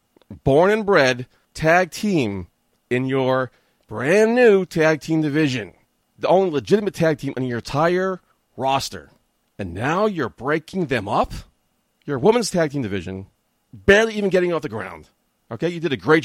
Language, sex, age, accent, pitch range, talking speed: English, male, 40-59, American, 110-170 Hz, 160 wpm